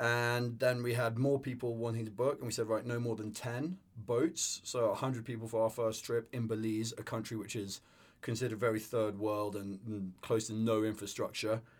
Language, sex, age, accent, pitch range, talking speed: English, male, 30-49, British, 110-125 Hz, 210 wpm